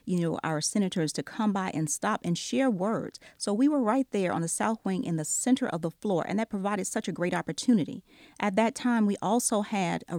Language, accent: English, American